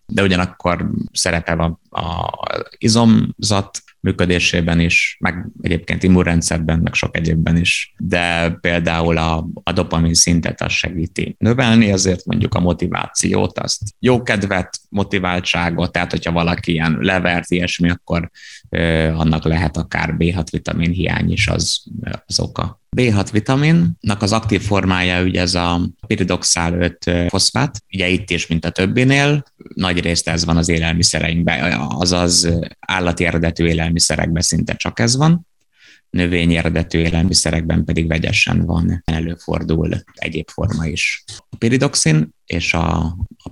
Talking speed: 125 wpm